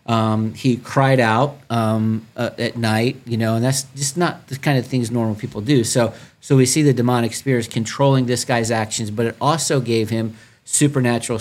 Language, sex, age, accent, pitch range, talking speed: English, male, 40-59, American, 115-125 Hz, 200 wpm